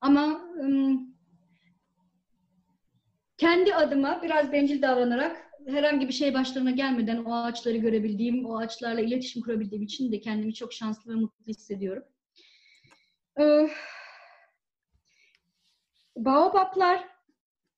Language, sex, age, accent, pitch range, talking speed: Turkish, female, 30-49, native, 225-290 Hz, 100 wpm